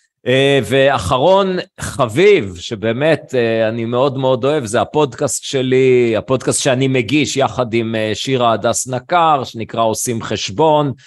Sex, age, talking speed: male, 40-59, 130 wpm